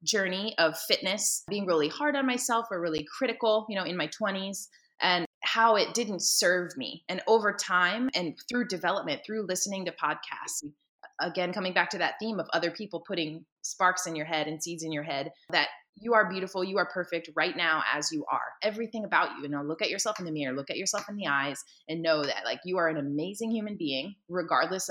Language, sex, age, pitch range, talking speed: English, female, 20-39, 160-215 Hz, 220 wpm